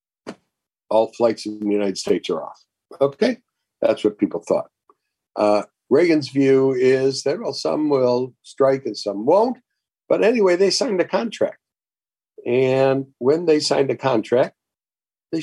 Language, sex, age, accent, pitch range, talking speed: English, male, 60-79, American, 110-145 Hz, 150 wpm